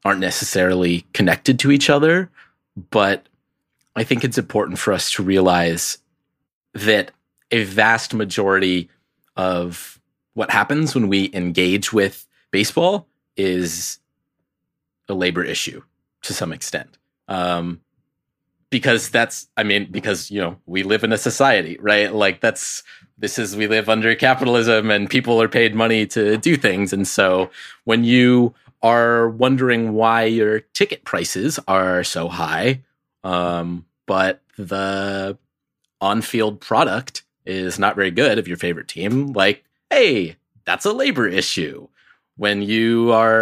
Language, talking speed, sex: English, 135 wpm, male